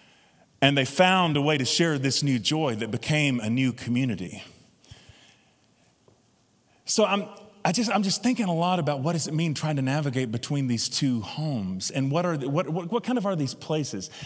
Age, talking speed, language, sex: 30-49, 200 wpm, English, male